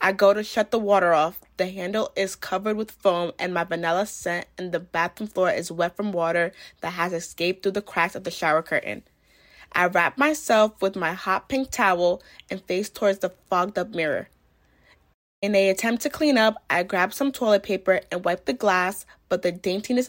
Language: English